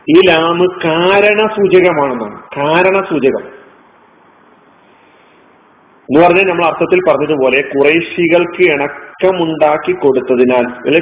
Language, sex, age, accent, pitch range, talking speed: Malayalam, male, 40-59, native, 155-200 Hz, 75 wpm